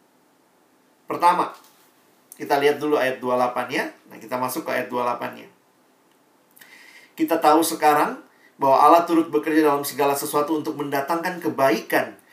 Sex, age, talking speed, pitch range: male, 40-59, 130 wpm, 135-165 Hz